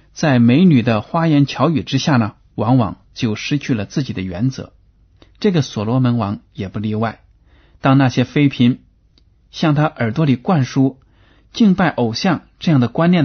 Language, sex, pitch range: Chinese, male, 105-130 Hz